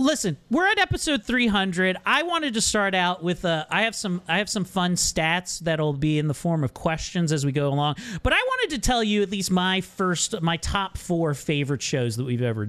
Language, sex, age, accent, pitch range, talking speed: English, male, 40-59, American, 155-230 Hz, 230 wpm